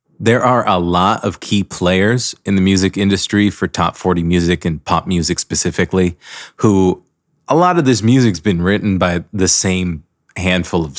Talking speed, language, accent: 180 wpm, English, American